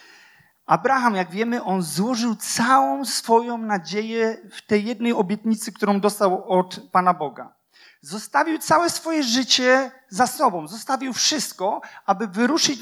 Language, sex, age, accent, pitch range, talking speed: Polish, male, 40-59, native, 185-240 Hz, 125 wpm